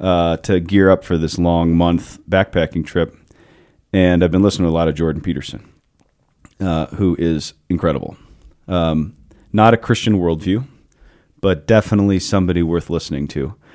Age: 40-59